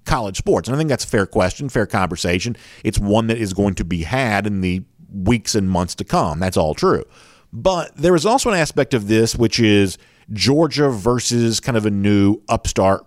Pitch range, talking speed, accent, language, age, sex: 95-130 Hz, 210 wpm, American, English, 50-69, male